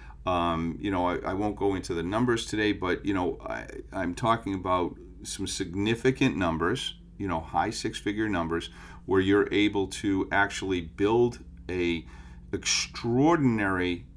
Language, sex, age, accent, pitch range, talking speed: English, male, 40-59, American, 85-100 Hz, 150 wpm